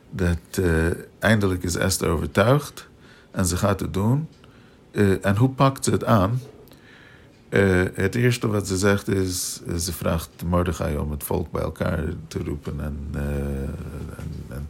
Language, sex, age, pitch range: Dutch, male, 50-69, 85-100 Hz